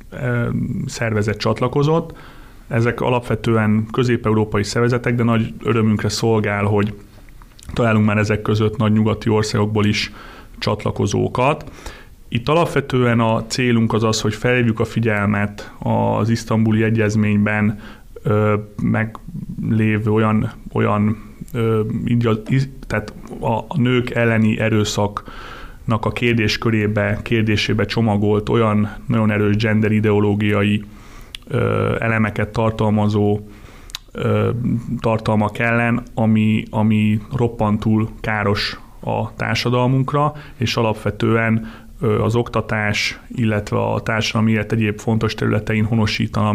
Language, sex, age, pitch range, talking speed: Hungarian, male, 30-49, 105-120 Hz, 95 wpm